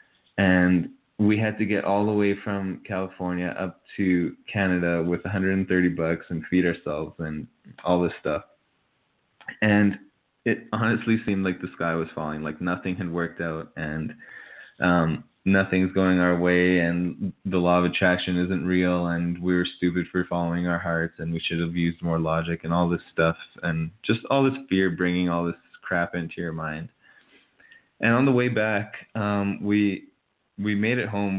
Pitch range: 85-105 Hz